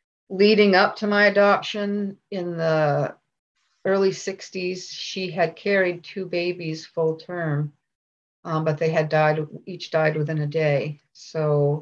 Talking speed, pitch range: 135 wpm, 150-180 Hz